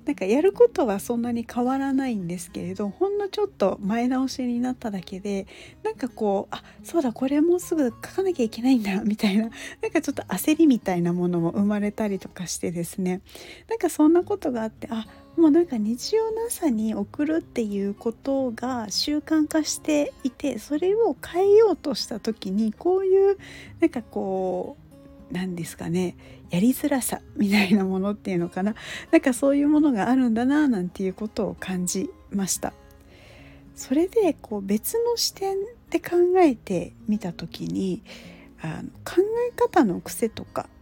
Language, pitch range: Japanese, 195-330 Hz